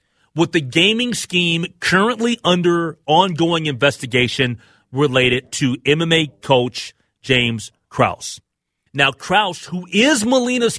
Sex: male